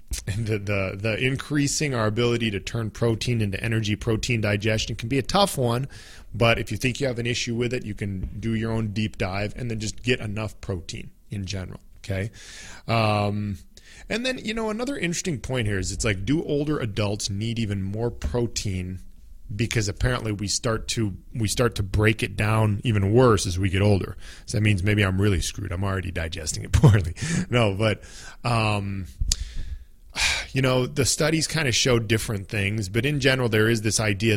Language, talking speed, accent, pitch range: English, 190 wpm, American, 100-125 Hz